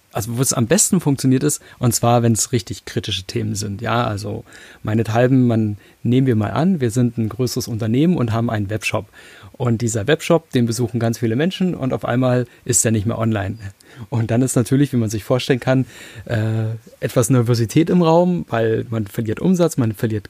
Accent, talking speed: German, 200 wpm